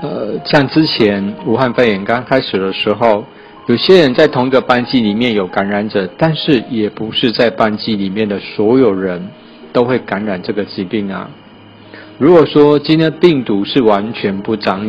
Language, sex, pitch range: Chinese, male, 100-130 Hz